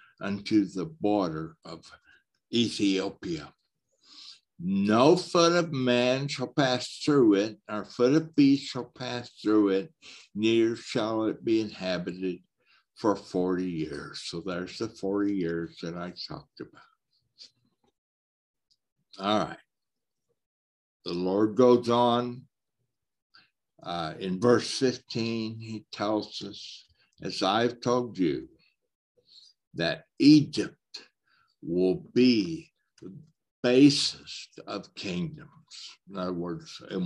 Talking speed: 110 wpm